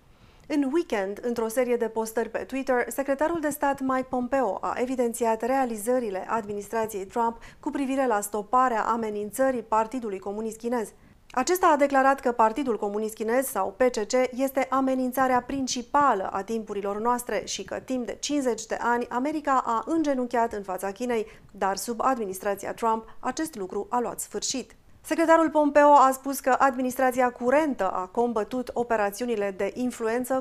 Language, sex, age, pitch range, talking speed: Romanian, female, 30-49, 210-260 Hz, 150 wpm